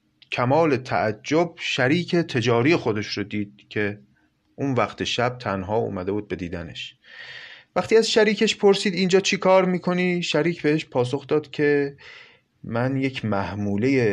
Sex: male